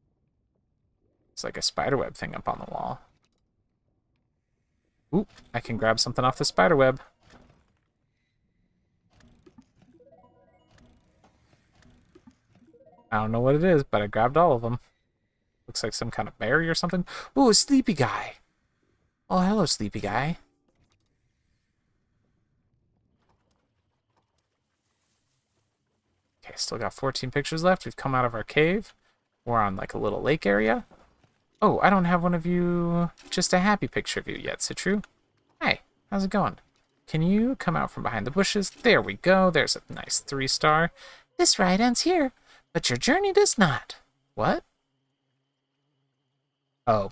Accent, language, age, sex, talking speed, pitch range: American, English, 30-49, male, 140 wpm, 115-185 Hz